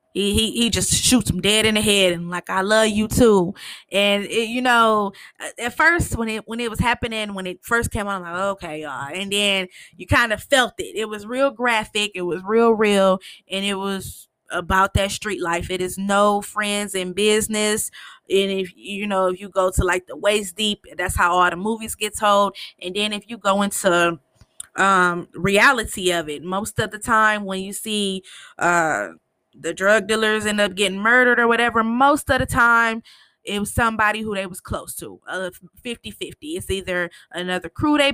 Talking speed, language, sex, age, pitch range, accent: 205 wpm, English, female, 20-39, 185-225 Hz, American